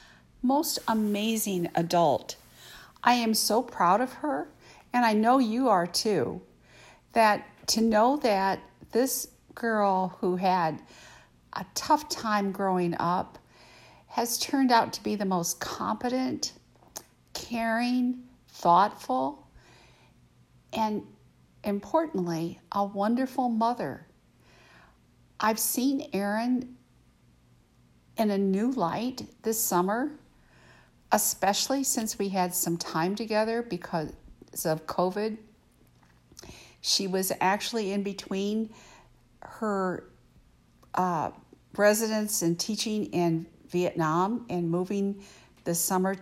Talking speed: 100 wpm